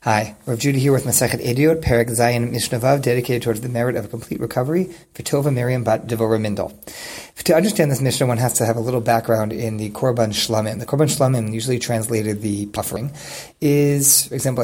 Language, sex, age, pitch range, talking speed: English, male, 30-49, 115-145 Hz, 195 wpm